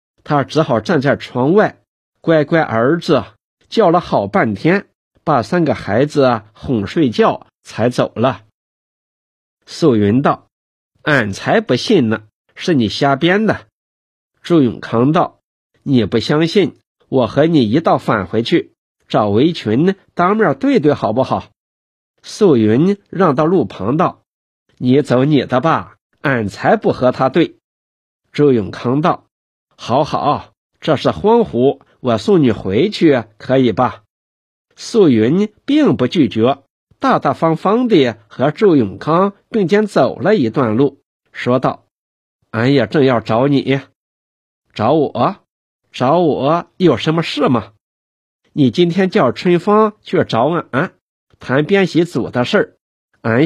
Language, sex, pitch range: Chinese, male, 110-165 Hz